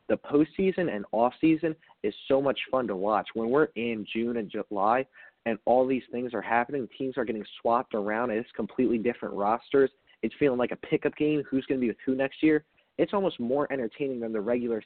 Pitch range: 115-135 Hz